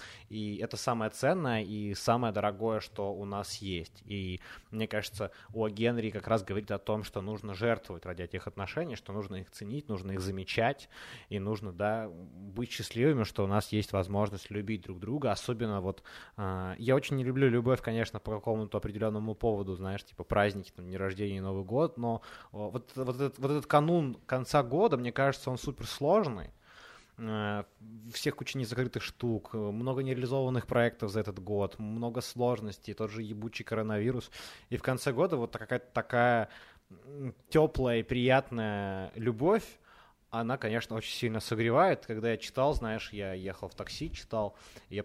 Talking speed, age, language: 165 wpm, 20-39, Ukrainian